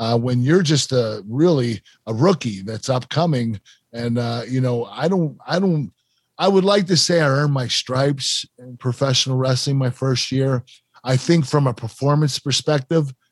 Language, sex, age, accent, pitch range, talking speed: English, male, 40-59, American, 115-145 Hz, 175 wpm